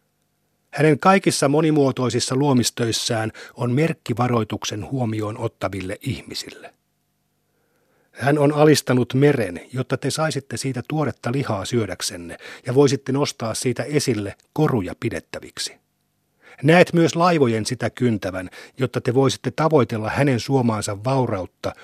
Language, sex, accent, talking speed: Finnish, male, native, 105 wpm